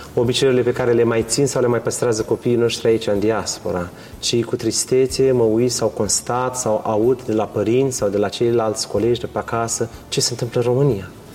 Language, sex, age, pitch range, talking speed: Romanian, male, 30-49, 105-125 Hz, 205 wpm